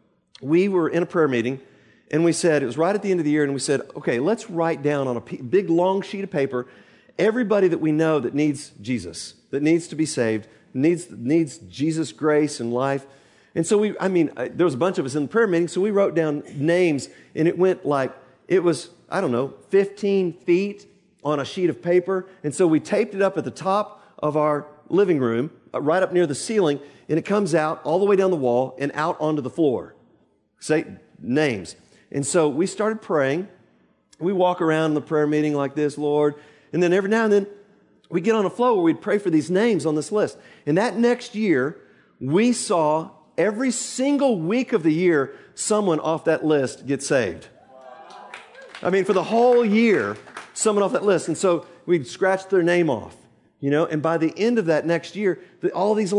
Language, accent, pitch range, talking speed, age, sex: English, American, 150-195 Hz, 220 wpm, 40-59, male